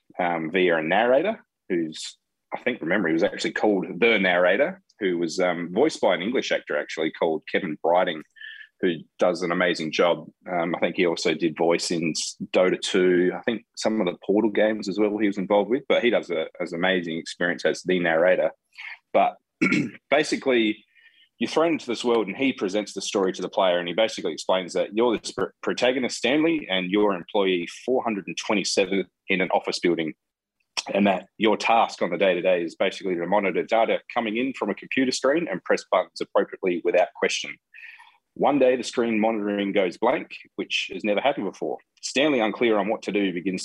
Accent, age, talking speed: Australian, 20-39, 195 wpm